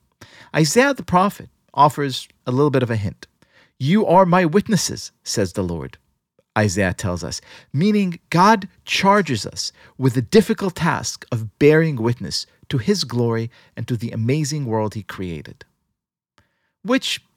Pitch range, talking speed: 120-185 Hz, 145 wpm